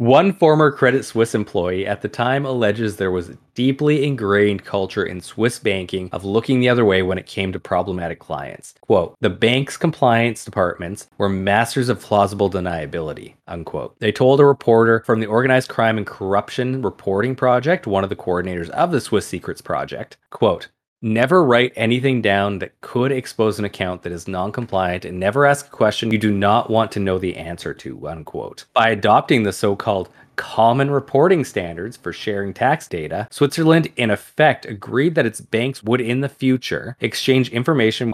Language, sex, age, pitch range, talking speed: English, male, 30-49, 95-125 Hz, 180 wpm